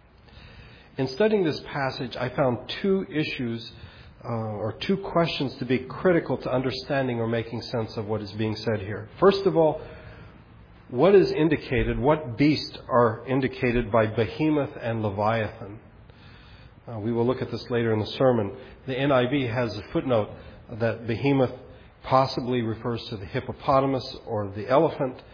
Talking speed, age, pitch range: 155 wpm, 40-59, 110-130 Hz